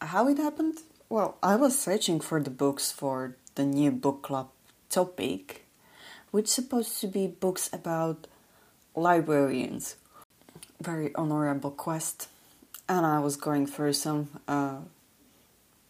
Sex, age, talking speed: female, 30-49, 130 wpm